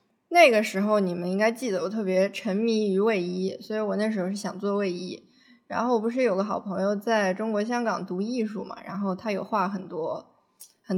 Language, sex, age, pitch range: Chinese, female, 20-39, 195-240 Hz